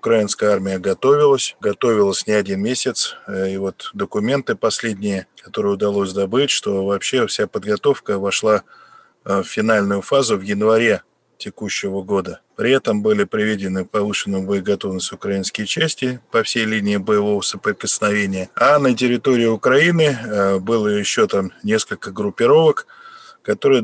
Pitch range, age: 100-135 Hz, 20-39